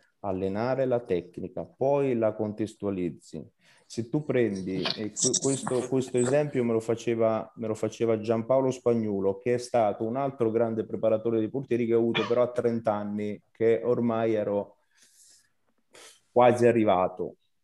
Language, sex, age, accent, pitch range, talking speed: Italian, male, 30-49, native, 105-130 Hz, 135 wpm